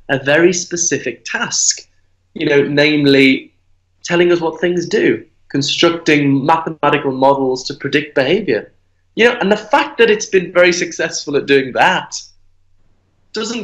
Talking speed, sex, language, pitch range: 140 wpm, male, English, 125-175 Hz